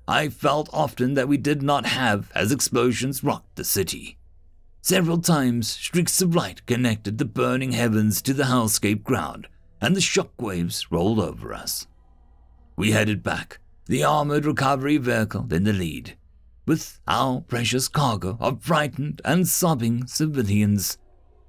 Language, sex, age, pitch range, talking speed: English, male, 50-69, 95-145 Hz, 140 wpm